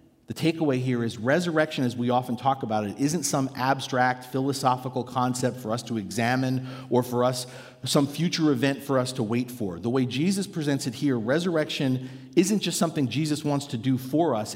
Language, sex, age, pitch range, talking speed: English, male, 40-59, 120-150 Hz, 195 wpm